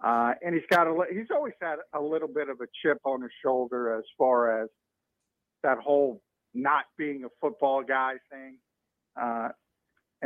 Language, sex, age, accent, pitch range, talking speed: English, male, 50-69, American, 130-170 Hz, 170 wpm